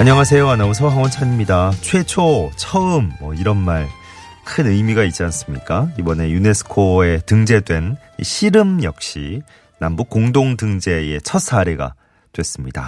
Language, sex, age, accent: Korean, male, 30-49, native